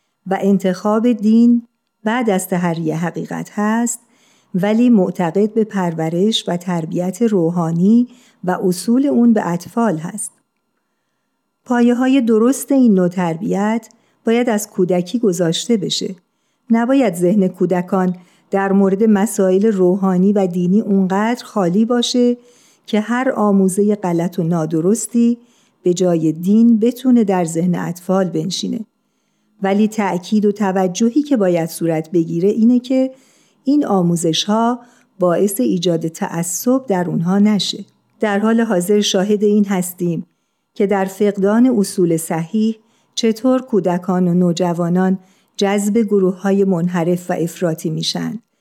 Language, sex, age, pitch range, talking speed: Persian, female, 50-69, 180-230 Hz, 120 wpm